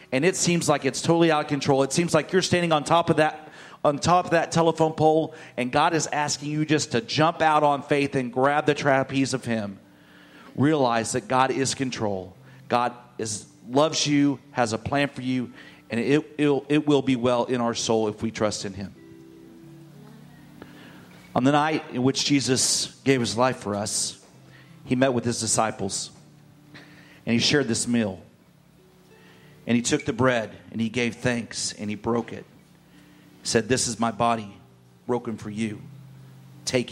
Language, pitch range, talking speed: English, 115-145 Hz, 185 wpm